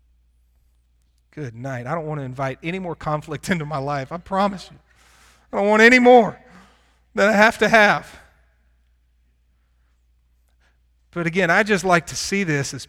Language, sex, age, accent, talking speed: English, male, 30-49, American, 165 wpm